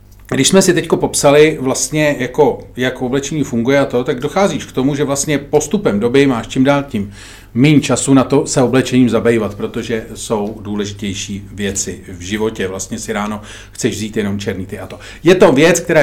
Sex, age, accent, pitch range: male, 40-59, native, 105-125 Hz